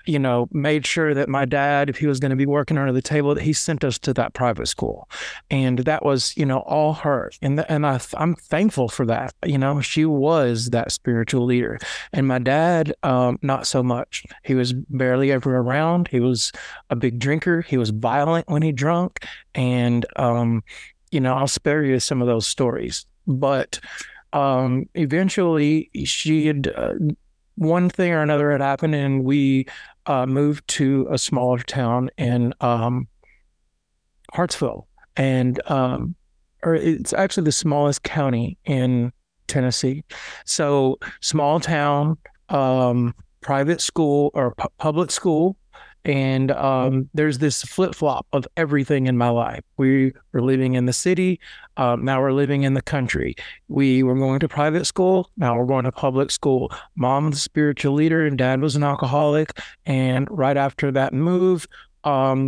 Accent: American